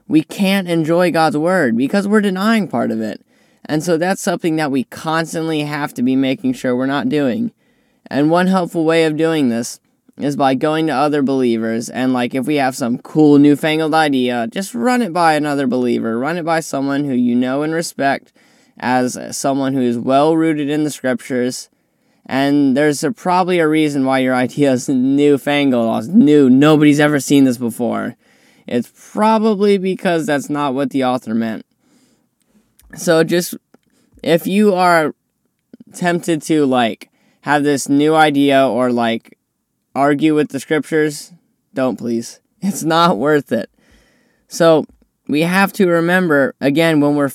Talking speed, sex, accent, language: 165 wpm, male, American, English